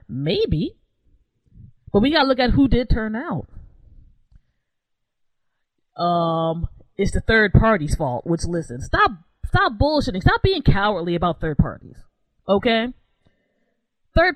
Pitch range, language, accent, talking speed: 160-230 Hz, English, American, 120 wpm